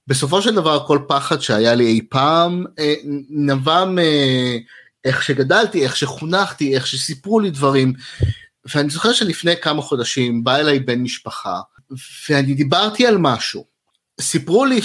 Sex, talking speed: male, 140 wpm